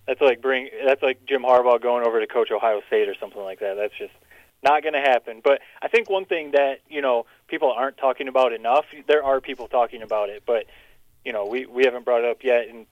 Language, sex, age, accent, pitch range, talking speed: English, male, 20-39, American, 120-150 Hz, 245 wpm